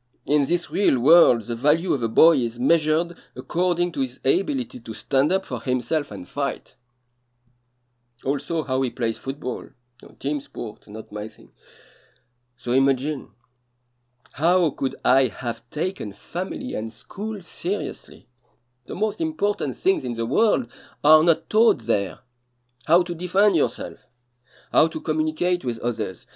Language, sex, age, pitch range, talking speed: English, male, 50-69, 120-160 Hz, 145 wpm